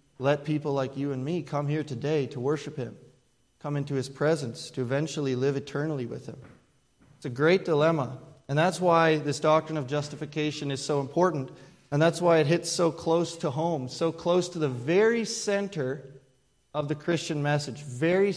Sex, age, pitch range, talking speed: male, 30-49, 135-160 Hz, 185 wpm